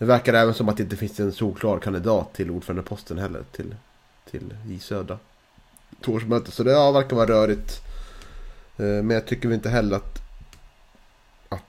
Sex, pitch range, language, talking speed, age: male, 95-110 Hz, Swedish, 175 wpm, 30-49